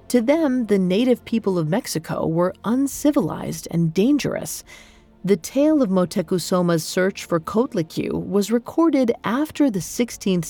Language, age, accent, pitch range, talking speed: English, 40-59, American, 170-235 Hz, 130 wpm